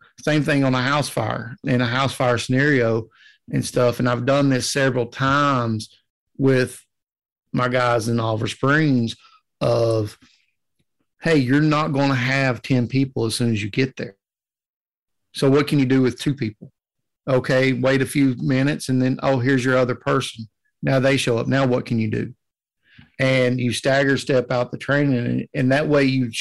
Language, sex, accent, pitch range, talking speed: English, male, American, 115-135 Hz, 180 wpm